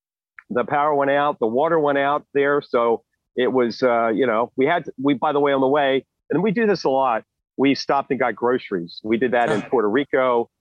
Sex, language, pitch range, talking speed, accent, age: male, English, 115-145 Hz, 240 wpm, American, 50-69